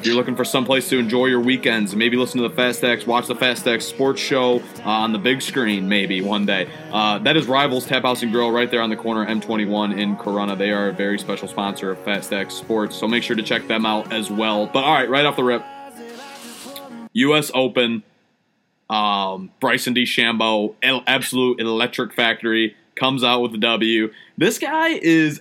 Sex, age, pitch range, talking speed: male, 30-49, 115-150 Hz, 210 wpm